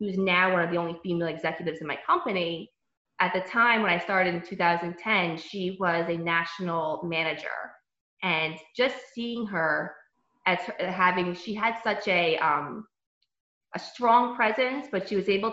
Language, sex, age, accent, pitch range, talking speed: English, female, 20-39, American, 165-200 Hz, 160 wpm